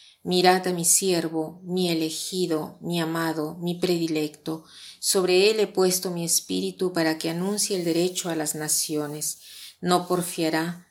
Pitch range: 165-185 Hz